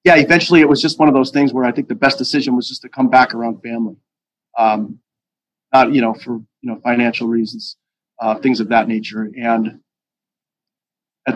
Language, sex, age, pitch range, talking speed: English, male, 30-49, 115-140 Hz, 200 wpm